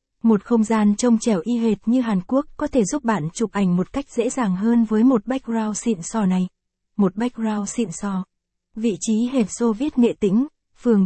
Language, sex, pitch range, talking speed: Vietnamese, female, 200-235 Hz, 210 wpm